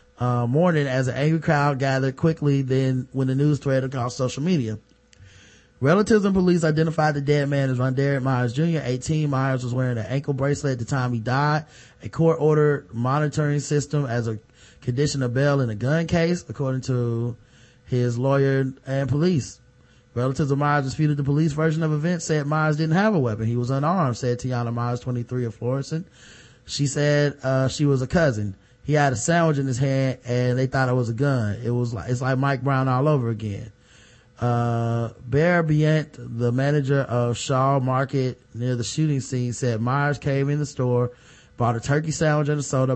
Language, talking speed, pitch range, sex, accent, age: English, 195 wpm, 125-145 Hz, male, American, 20-39